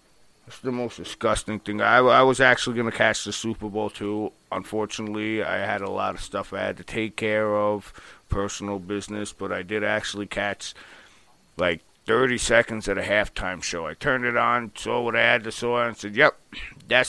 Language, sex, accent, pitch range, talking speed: English, male, American, 100-120 Hz, 195 wpm